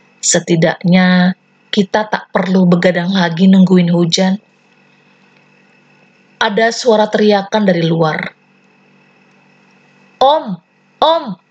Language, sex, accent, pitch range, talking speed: Indonesian, female, native, 185-215 Hz, 80 wpm